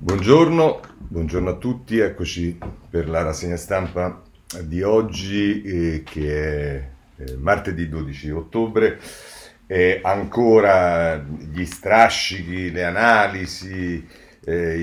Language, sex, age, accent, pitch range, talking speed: Italian, male, 40-59, native, 80-100 Hz, 100 wpm